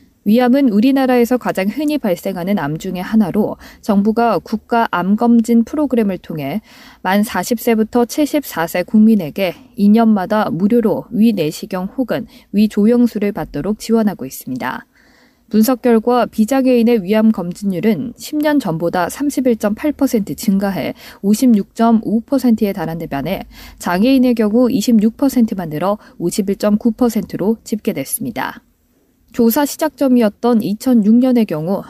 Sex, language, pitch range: female, Korean, 200-250 Hz